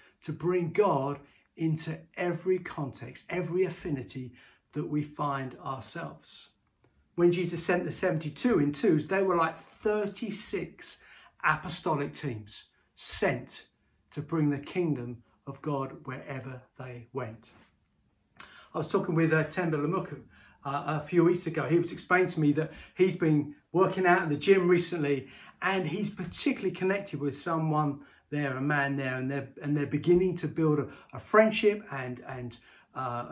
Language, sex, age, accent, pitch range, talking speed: English, male, 40-59, British, 140-190 Hz, 150 wpm